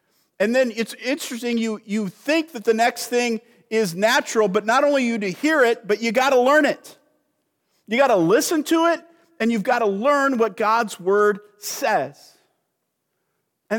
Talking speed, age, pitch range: 185 wpm, 50-69, 215-295 Hz